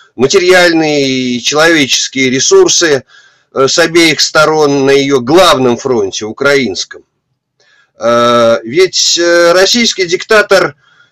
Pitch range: 145-215 Hz